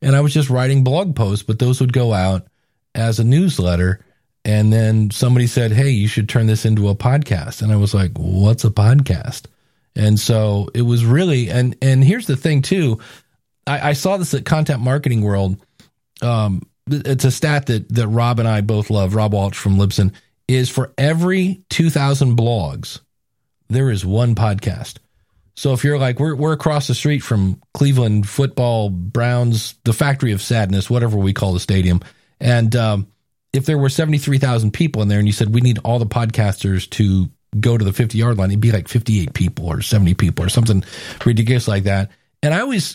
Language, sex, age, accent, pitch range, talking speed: English, male, 40-59, American, 105-140 Hz, 195 wpm